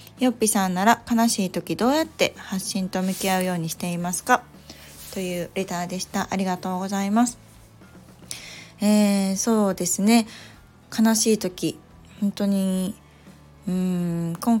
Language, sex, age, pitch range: Japanese, female, 20-39, 175-210 Hz